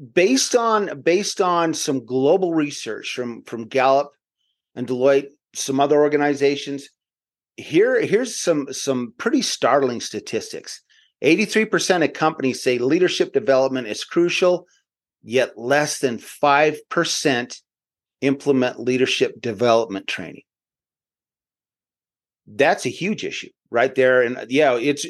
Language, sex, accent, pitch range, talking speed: English, male, American, 125-165 Hz, 110 wpm